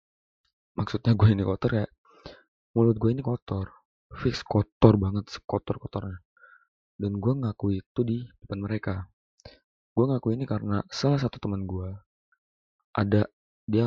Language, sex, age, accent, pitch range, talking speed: Indonesian, male, 20-39, native, 95-115 Hz, 135 wpm